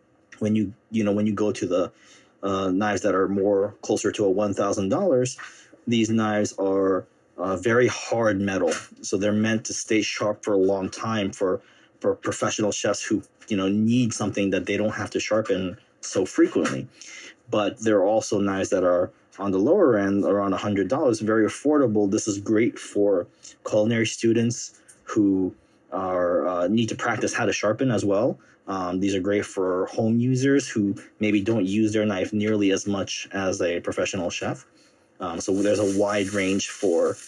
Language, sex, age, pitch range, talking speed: English, male, 30-49, 100-120 Hz, 185 wpm